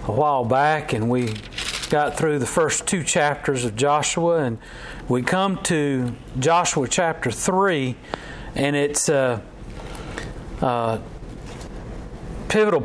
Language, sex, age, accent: English, male, 40-59, American